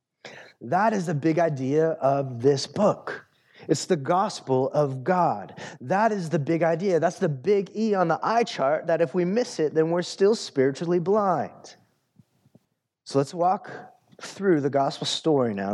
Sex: male